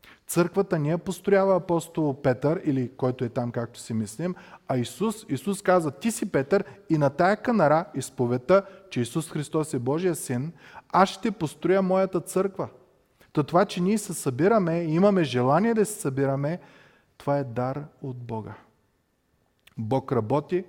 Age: 30-49